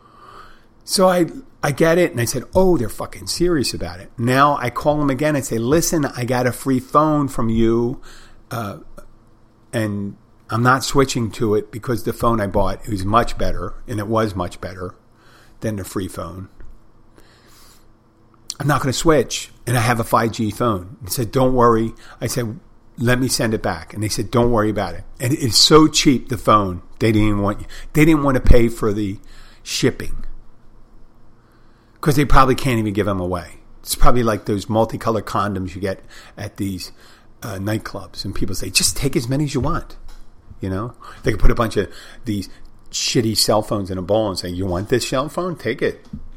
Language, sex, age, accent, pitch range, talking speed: English, male, 50-69, American, 105-130 Hz, 200 wpm